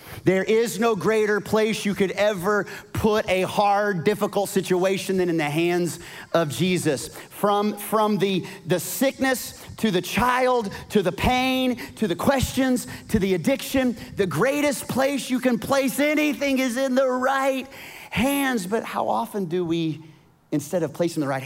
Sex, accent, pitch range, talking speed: male, American, 135-225 Hz, 160 wpm